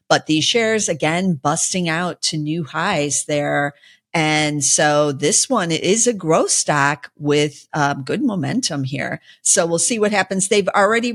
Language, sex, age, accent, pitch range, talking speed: English, female, 50-69, American, 150-195 Hz, 160 wpm